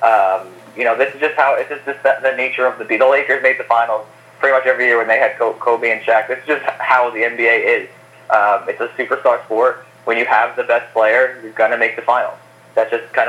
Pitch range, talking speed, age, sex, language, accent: 120-140 Hz, 255 wpm, 20-39, male, English, American